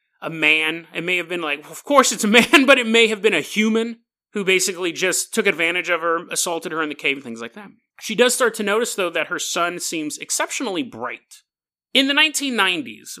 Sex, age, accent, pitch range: male, 30-49, American, 165-245 Hz